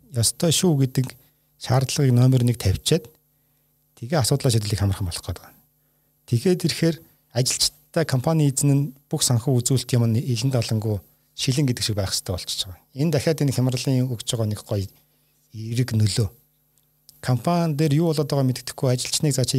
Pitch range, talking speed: 115-145 Hz, 145 wpm